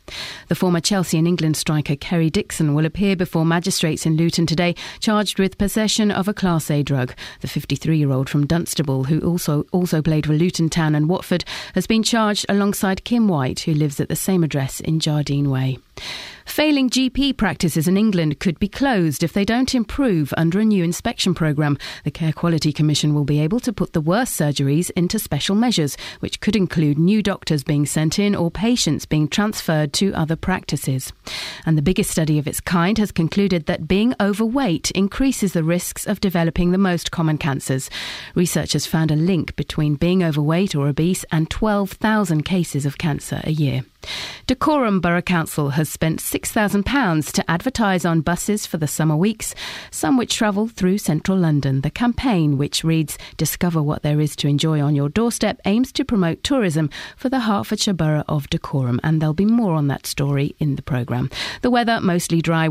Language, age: English, 40-59